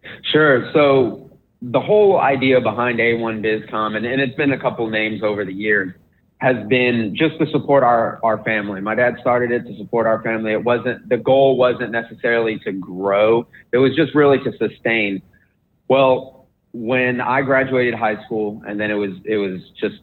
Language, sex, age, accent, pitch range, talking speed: English, male, 30-49, American, 105-125 Hz, 180 wpm